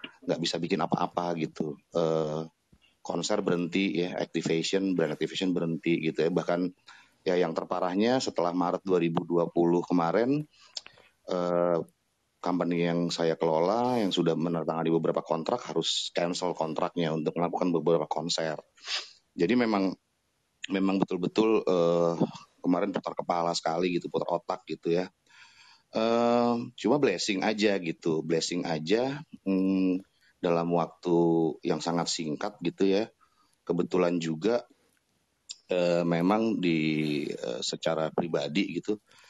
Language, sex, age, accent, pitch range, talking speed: Indonesian, male, 30-49, native, 80-90 Hz, 120 wpm